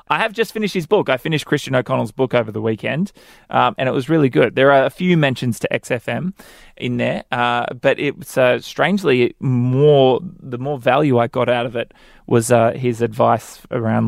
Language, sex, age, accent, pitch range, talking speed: English, male, 20-39, Australian, 120-150 Hz, 210 wpm